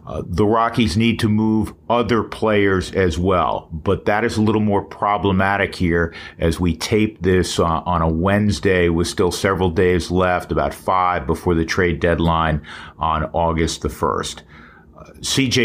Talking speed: 165 wpm